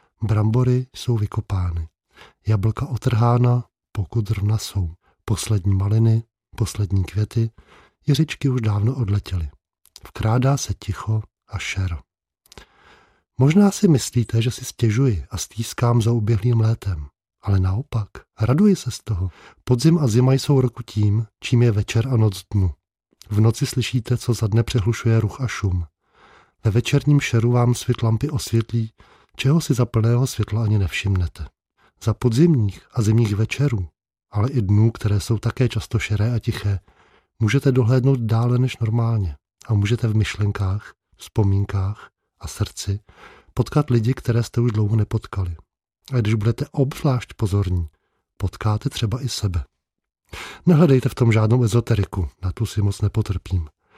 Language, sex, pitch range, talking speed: Czech, male, 100-120 Hz, 140 wpm